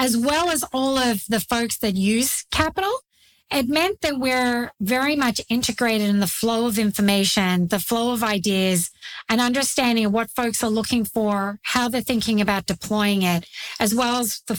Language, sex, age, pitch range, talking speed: English, female, 40-59, 210-265 Hz, 180 wpm